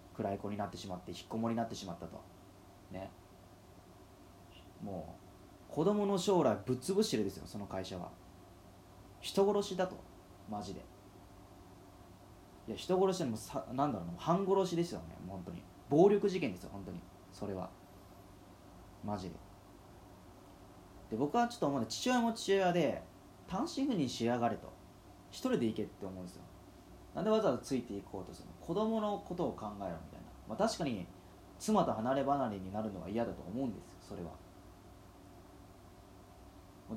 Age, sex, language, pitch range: 30-49, male, Japanese, 95-125 Hz